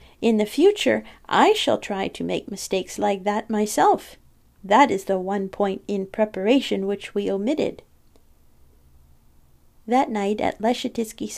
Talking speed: 135 wpm